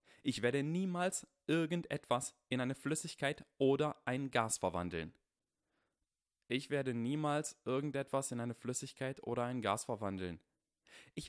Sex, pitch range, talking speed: male, 100-150 Hz, 120 wpm